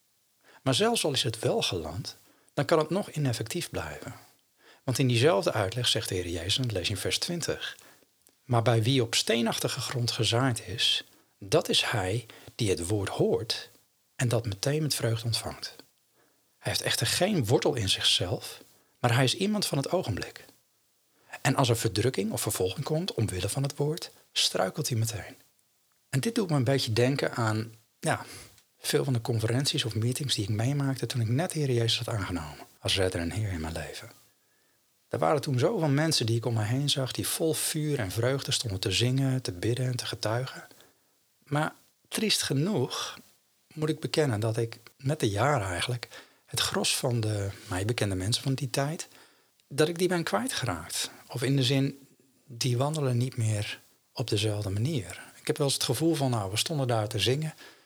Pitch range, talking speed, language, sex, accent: 110-140 Hz, 190 wpm, Dutch, male, Dutch